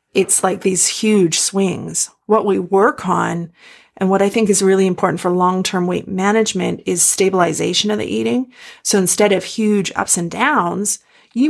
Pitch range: 180-225 Hz